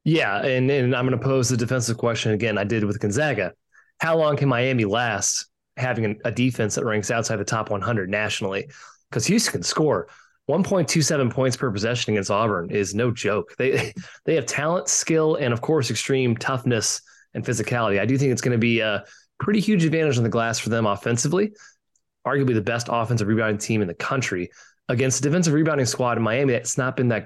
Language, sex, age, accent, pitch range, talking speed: English, male, 20-39, American, 105-135 Hz, 205 wpm